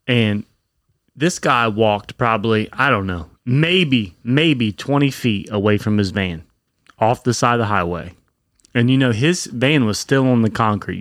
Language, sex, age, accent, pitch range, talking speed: English, male, 30-49, American, 100-125 Hz, 175 wpm